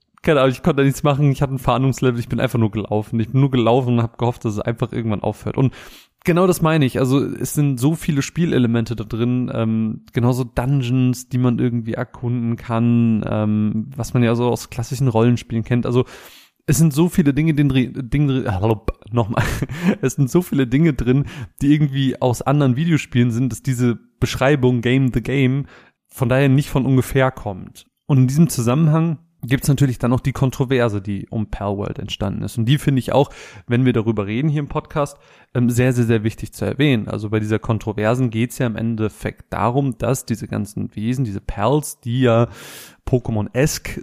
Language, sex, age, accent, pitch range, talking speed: German, male, 30-49, German, 115-140 Hz, 200 wpm